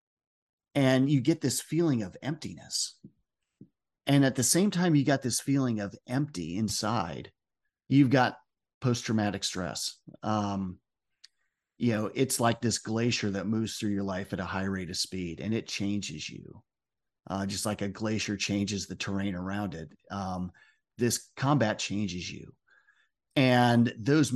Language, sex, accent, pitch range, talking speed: English, male, American, 100-125 Hz, 155 wpm